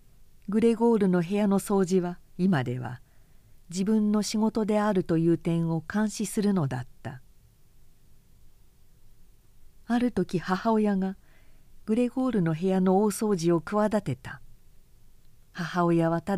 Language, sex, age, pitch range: Japanese, female, 50-69, 150-210 Hz